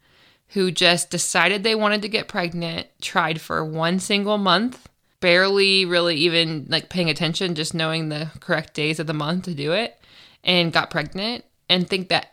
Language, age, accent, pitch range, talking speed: English, 20-39, American, 165-195 Hz, 175 wpm